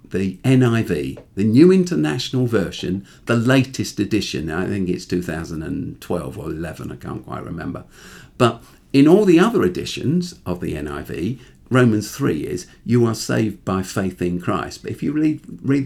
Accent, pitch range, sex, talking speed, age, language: British, 95-135 Hz, male, 165 wpm, 50-69, English